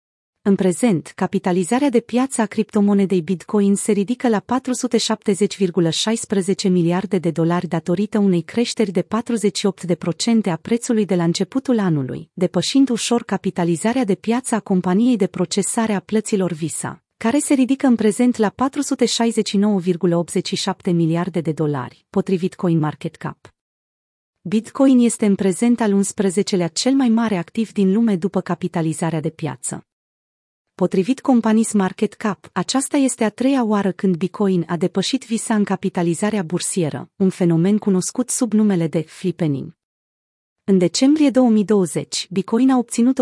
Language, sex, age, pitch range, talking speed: Romanian, female, 30-49, 180-225 Hz, 135 wpm